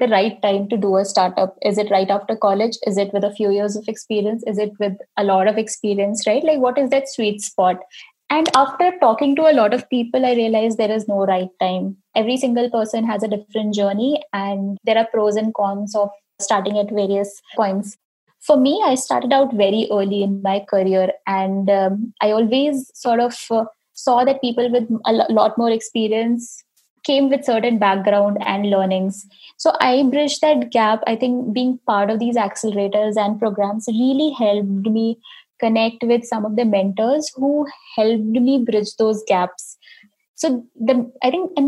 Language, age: English, 20-39